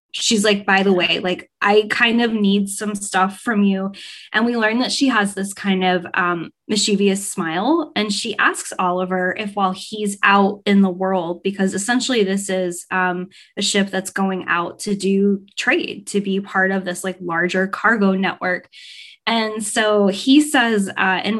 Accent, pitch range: American, 190-220 Hz